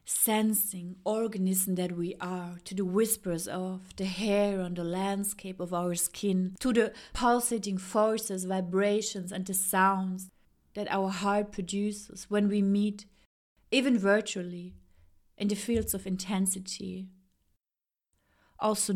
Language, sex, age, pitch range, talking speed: German, female, 30-49, 190-235 Hz, 125 wpm